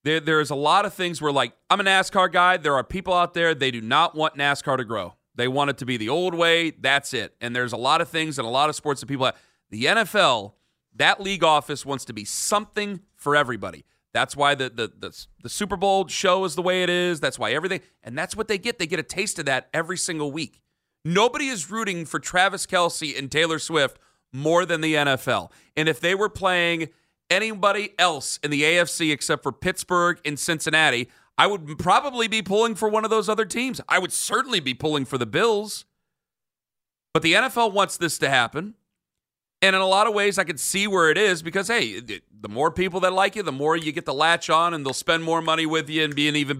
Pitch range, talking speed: 145-185 Hz, 235 wpm